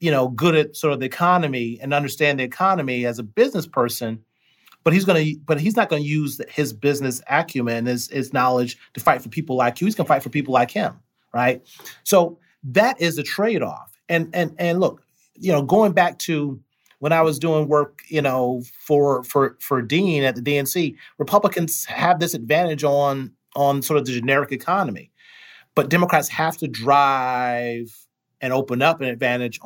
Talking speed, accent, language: 190 wpm, American, English